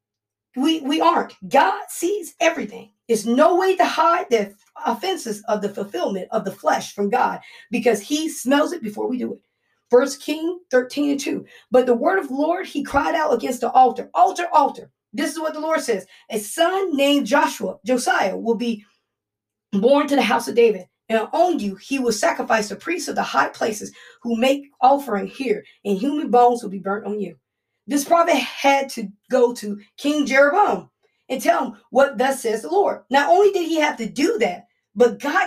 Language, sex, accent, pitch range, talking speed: English, female, American, 225-310 Hz, 200 wpm